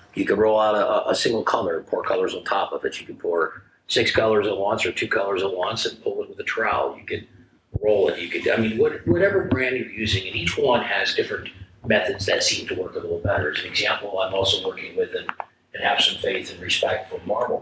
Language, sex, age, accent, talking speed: English, male, 50-69, American, 250 wpm